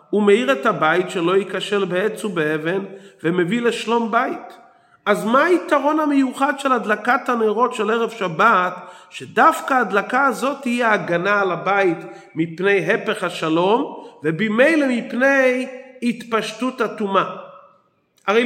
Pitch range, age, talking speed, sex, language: 195-255 Hz, 40-59, 115 wpm, male, Hebrew